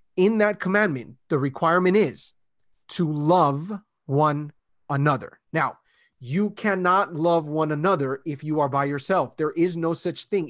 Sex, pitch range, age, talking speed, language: male, 150-185 Hz, 30-49, 150 wpm, English